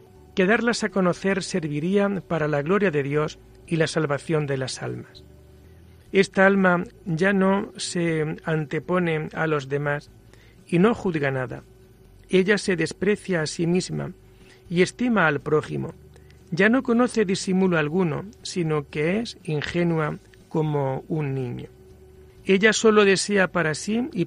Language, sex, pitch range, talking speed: Spanish, male, 150-195 Hz, 140 wpm